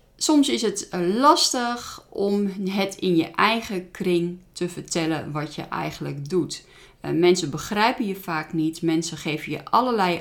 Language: Dutch